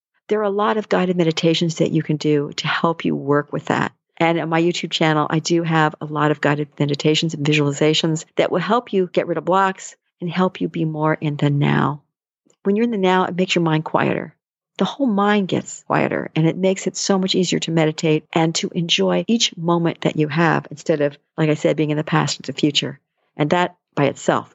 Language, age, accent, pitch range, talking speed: English, 50-69, American, 160-215 Hz, 235 wpm